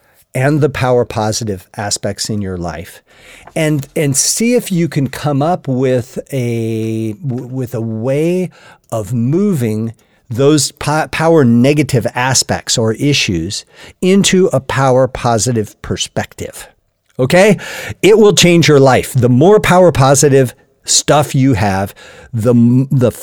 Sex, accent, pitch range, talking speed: male, American, 110-145 Hz, 130 wpm